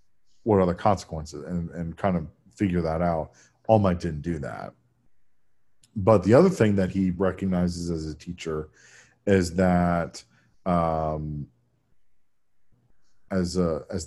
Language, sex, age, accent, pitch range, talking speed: English, male, 40-59, American, 85-100 Hz, 135 wpm